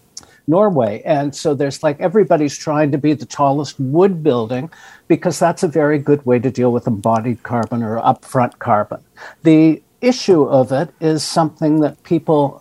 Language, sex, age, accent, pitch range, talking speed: English, male, 60-79, American, 140-180 Hz, 165 wpm